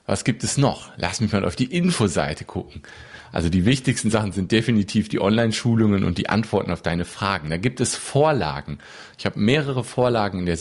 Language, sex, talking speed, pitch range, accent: German, male, 200 wpm, 90-125 Hz, German